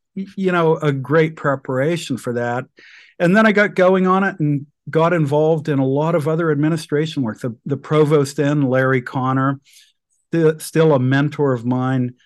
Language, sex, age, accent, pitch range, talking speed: English, male, 50-69, American, 130-160 Hz, 170 wpm